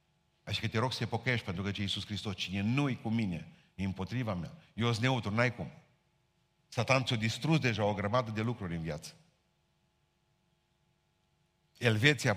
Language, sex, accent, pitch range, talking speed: Romanian, male, native, 115-140 Hz, 165 wpm